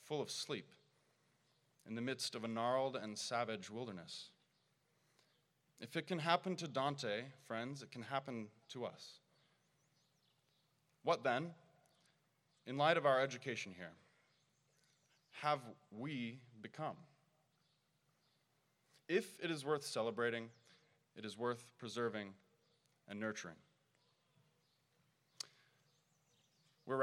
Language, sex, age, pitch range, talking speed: English, male, 30-49, 115-155 Hz, 105 wpm